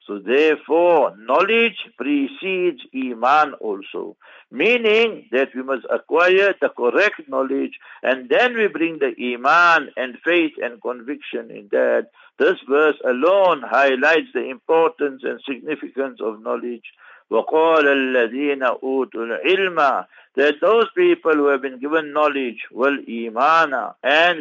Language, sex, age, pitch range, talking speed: English, male, 60-79, 135-170 Hz, 125 wpm